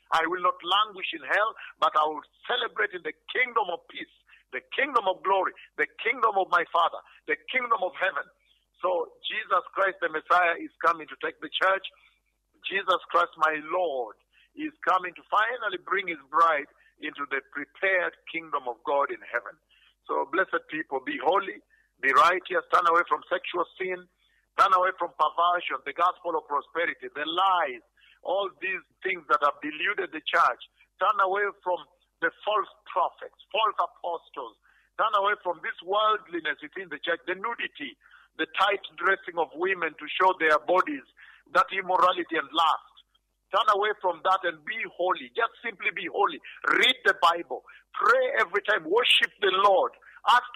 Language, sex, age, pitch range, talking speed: English, male, 50-69, 170-245 Hz, 165 wpm